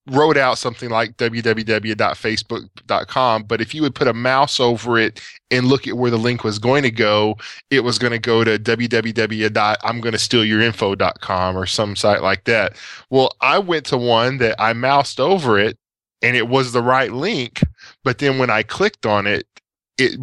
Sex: male